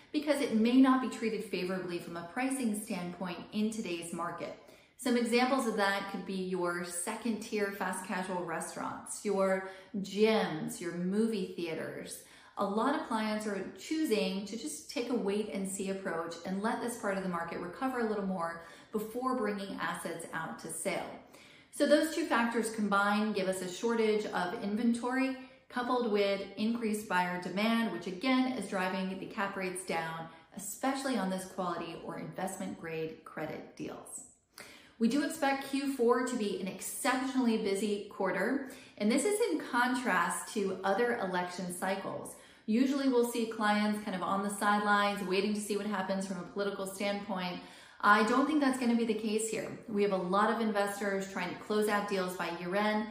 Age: 30-49